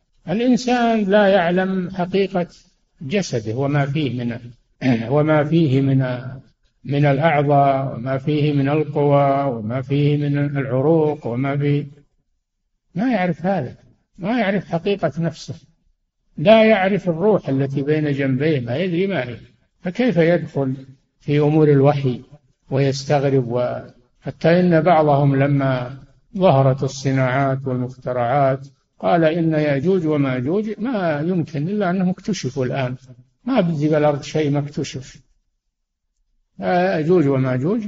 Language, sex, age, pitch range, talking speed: Arabic, male, 60-79, 135-185 Hz, 110 wpm